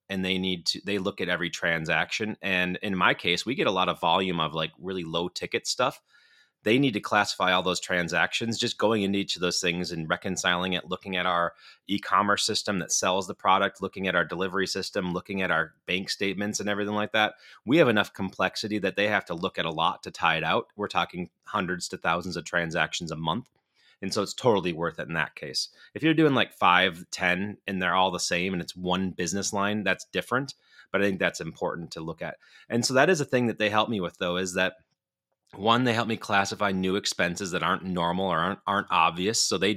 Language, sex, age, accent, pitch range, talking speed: English, male, 30-49, American, 90-105 Hz, 235 wpm